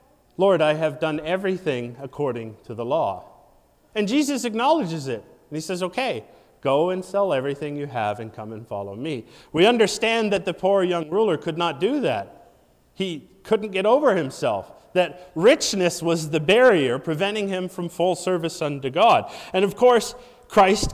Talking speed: 170 wpm